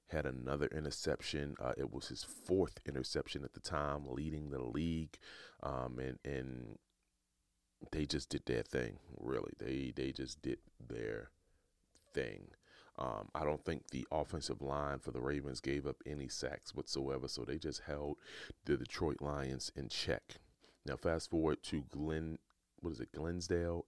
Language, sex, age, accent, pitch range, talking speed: English, male, 30-49, American, 65-80 Hz, 160 wpm